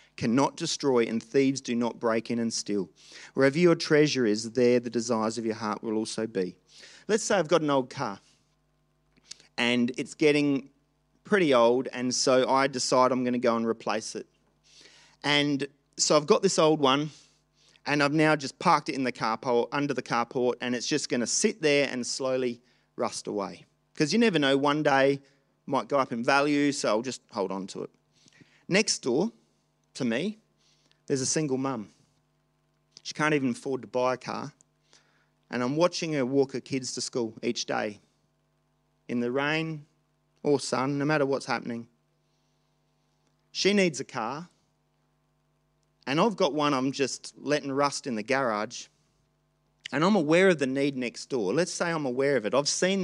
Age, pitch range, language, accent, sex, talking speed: 40-59, 120-150 Hz, English, Australian, male, 185 wpm